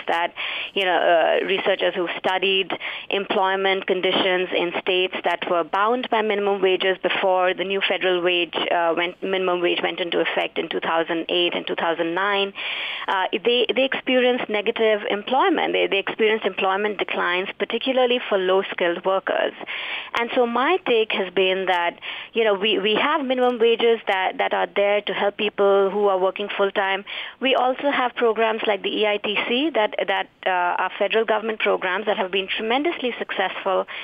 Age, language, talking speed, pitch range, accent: 30-49, English, 160 wpm, 190-240 Hz, Indian